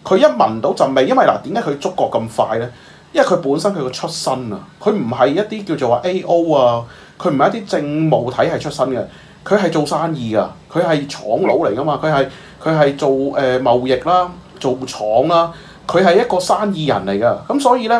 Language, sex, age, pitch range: Chinese, male, 30-49, 130-190 Hz